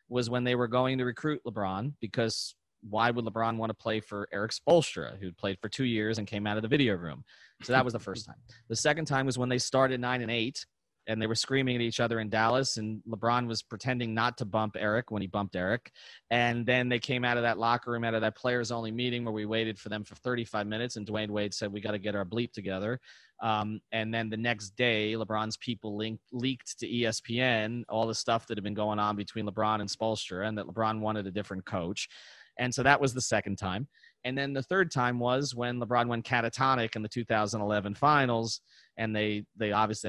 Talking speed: 235 wpm